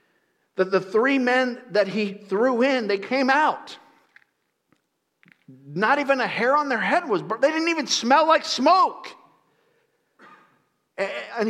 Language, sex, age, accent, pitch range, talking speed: English, male, 50-69, American, 175-265 Hz, 140 wpm